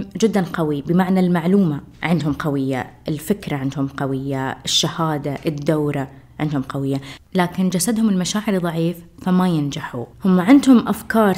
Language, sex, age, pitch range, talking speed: Arabic, female, 20-39, 160-195 Hz, 115 wpm